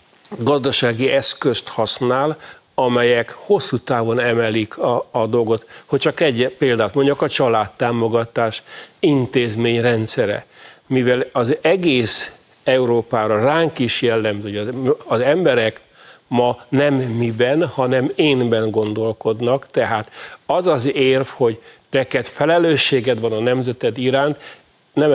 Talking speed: 110 wpm